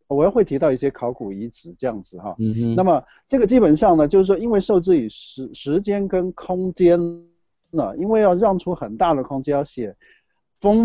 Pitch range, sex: 125-195 Hz, male